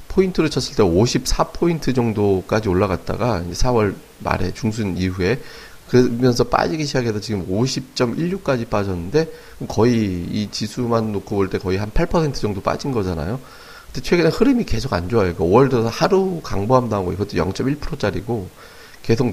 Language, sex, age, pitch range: Korean, male, 30-49, 95-130 Hz